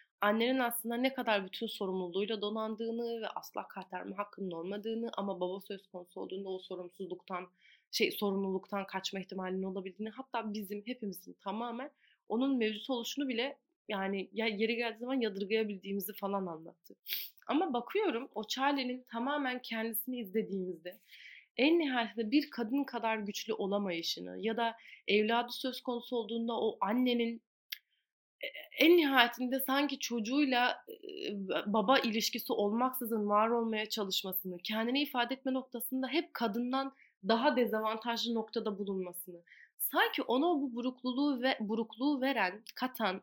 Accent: native